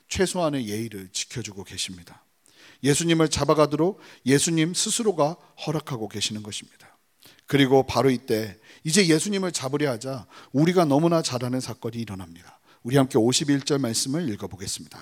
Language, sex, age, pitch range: Korean, male, 40-59, 125-165 Hz